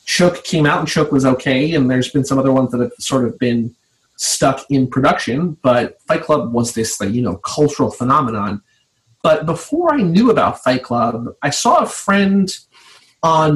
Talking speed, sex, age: 185 wpm, male, 30-49